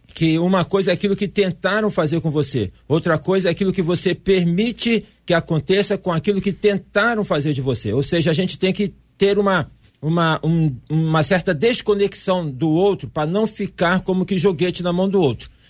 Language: Portuguese